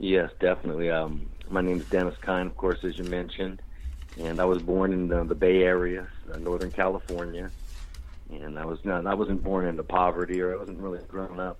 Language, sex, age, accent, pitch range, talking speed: English, male, 50-69, American, 75-90 Hz, 200 wpm